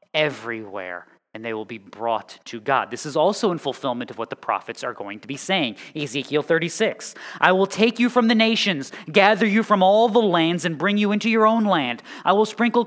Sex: male